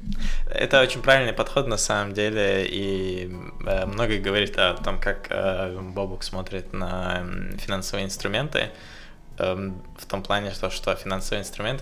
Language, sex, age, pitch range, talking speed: Russian, male, 20-39, 95-105 Hz, 120 wpm